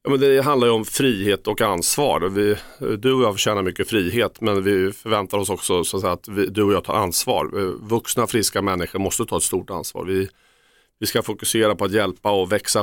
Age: 40-59